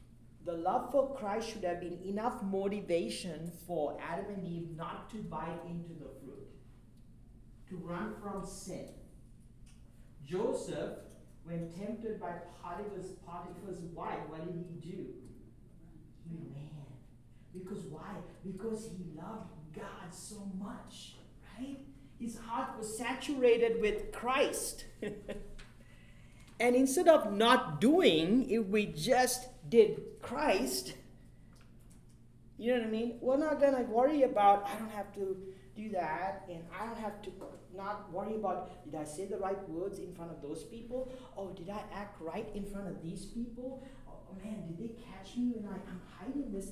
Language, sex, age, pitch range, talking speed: English, male, 40-59, 175-250 Hz, 150 wpm